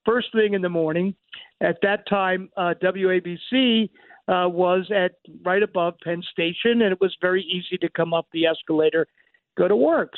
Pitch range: 170-210 Hz